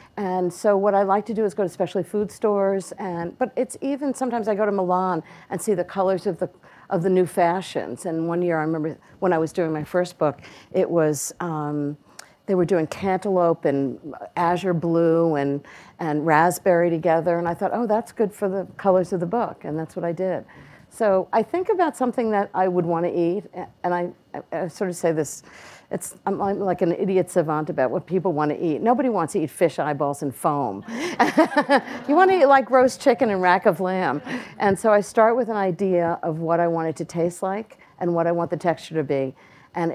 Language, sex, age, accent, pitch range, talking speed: English, female, 50-69, American, 160-200 Hz, 220 wpm